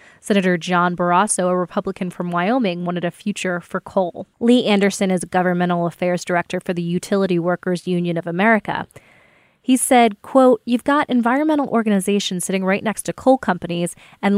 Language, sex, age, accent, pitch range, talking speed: English, female, 20-39, American, 180-220 Hz, 165 wpm